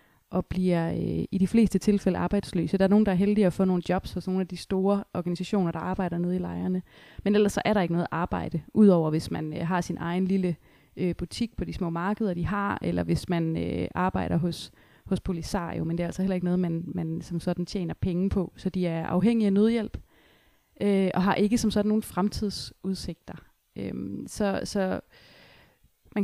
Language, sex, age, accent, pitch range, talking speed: Danish, female, 30-49, native, 175-205 Hz, 215 wpm